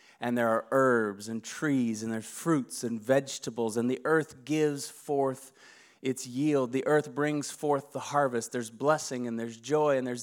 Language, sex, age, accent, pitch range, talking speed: English, male, 30-49, American, 120-145 Hz, 180 wpm